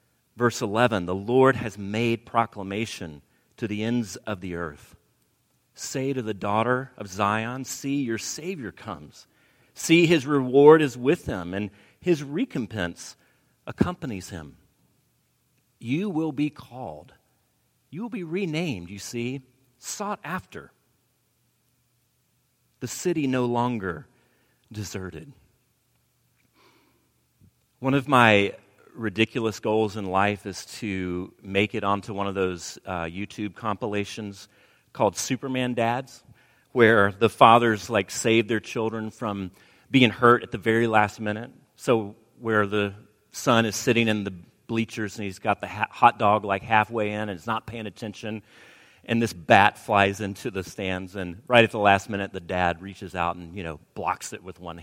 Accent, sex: American, male